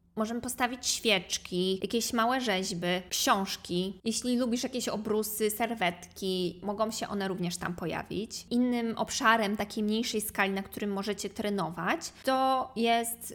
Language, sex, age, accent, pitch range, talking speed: Polish, female, 20-39, native, 195-240 Hz, 130 wpm